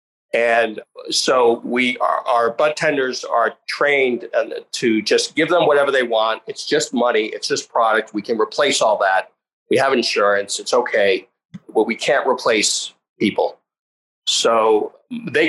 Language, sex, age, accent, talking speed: English, male, 40-59, American, 155 wpm